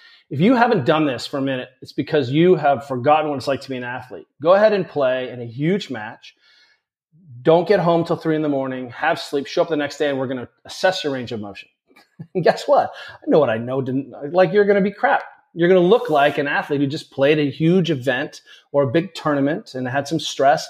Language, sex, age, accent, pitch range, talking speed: English, male, 30-49, American, 135-170 Hz, 245 wpm